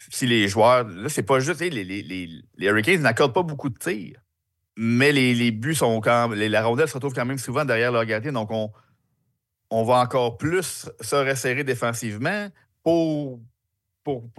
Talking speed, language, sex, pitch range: 190 wpm, French, male, 100-125 Hz